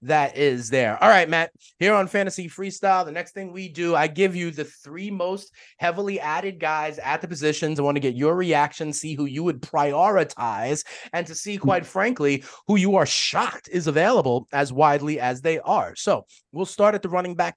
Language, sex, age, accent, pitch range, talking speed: English, male, 30-49, American, 140-180 Hz, 210 wpm